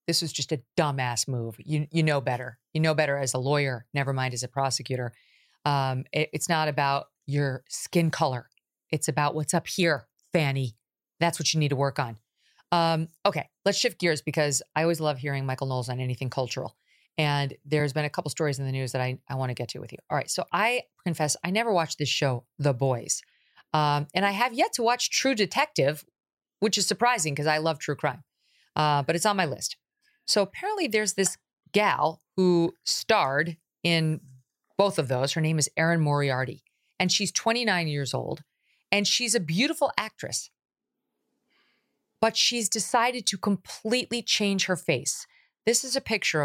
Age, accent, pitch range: 40-59, American, 140-195 Hz